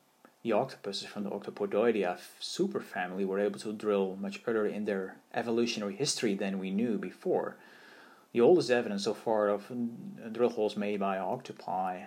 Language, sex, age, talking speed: English, male, 30-49, 155 wpm